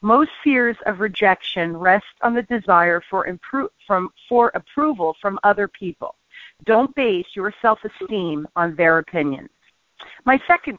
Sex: female